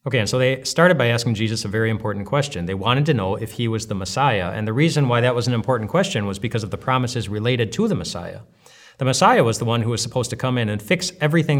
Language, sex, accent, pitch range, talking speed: English, male, American, 105-135 Hz, 275 wpm